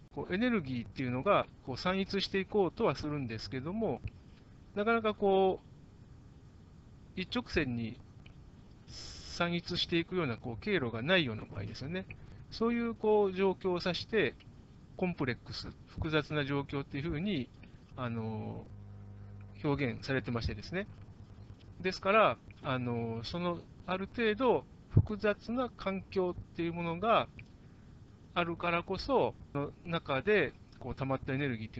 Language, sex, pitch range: Japanese, male, 115-185 Hz